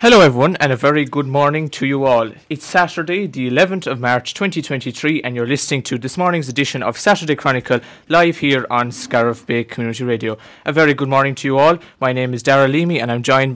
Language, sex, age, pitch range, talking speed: English, male, 20-39, 125-150 Hz, 215 wpm